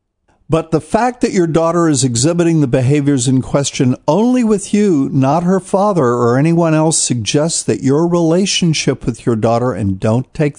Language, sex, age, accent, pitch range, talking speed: English, male, 50-69, American, 115-155 Hz, 175 wpm